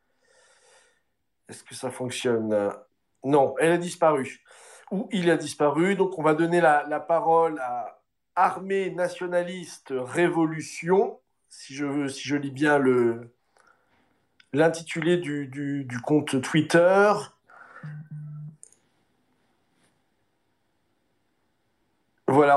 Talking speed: 90 wpm